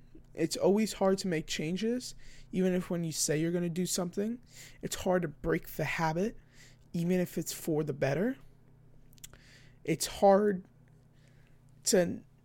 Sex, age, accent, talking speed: male, 20-39, American, 150 wpm